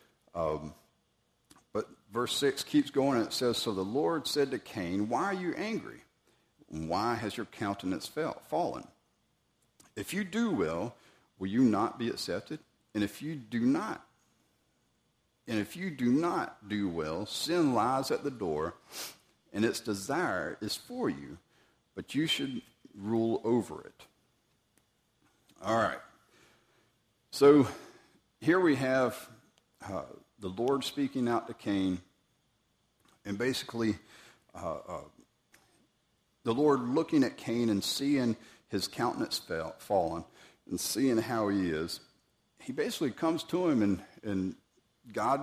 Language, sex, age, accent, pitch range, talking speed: English, male, 50-69, American, 105-140 Hz, 135 wpm